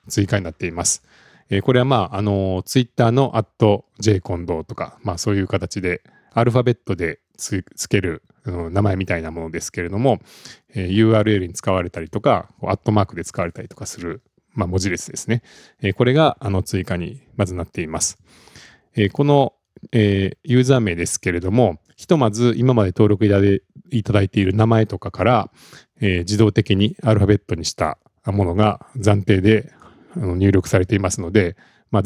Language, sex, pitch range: Japanese, male, 90-115 Hz